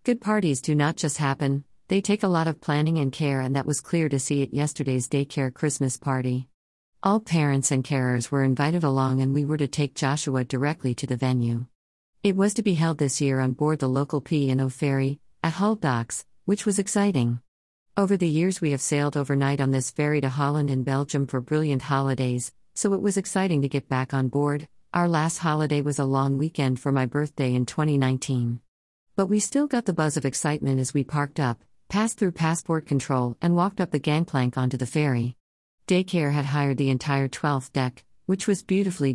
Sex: female